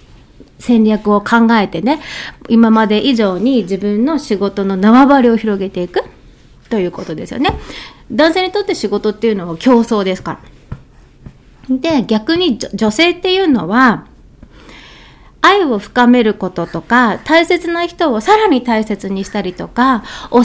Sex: female